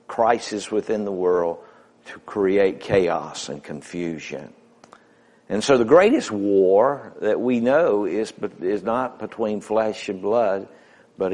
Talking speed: 140 wpm